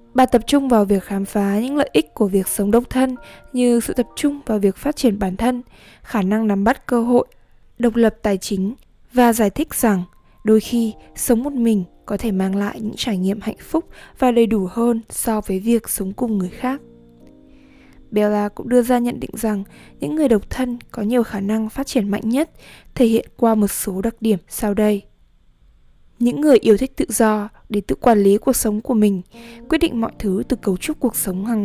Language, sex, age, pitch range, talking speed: Vietnamese, female, 20-39, 205-245 Hz, 220 wpm